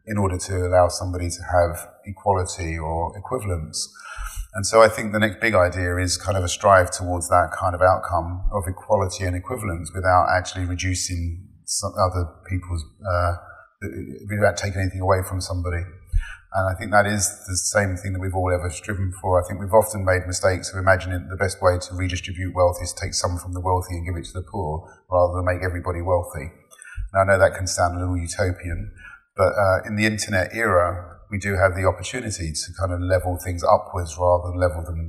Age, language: 30-49, English